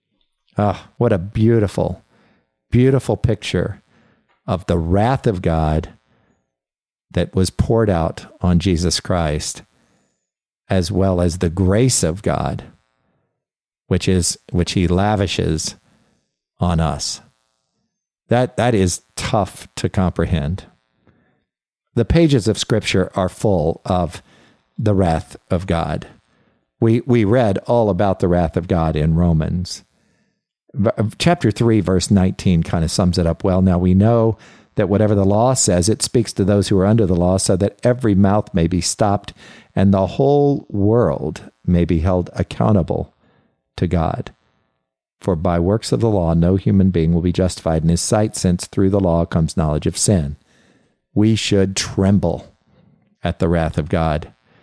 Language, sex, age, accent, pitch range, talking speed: English, male, 50-69, American, 85-105 Hz, 150 wpm